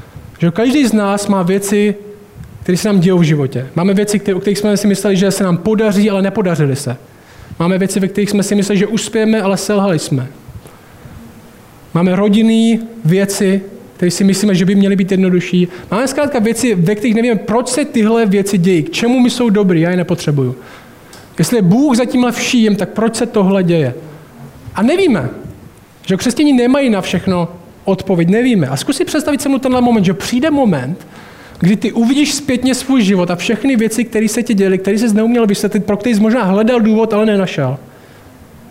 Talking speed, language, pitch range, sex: 190 wpm, Czech, 175-225 Hz, male